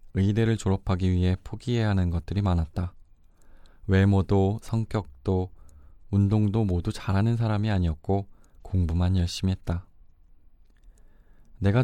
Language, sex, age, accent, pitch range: Korean, male, 20-39, native, 85-105 Hz